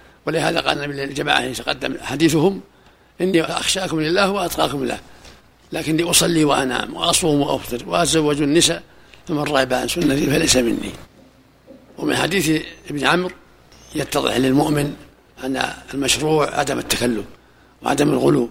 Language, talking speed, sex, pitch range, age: Arabic, 115 wpm, male, 135-170 Hz, 60-79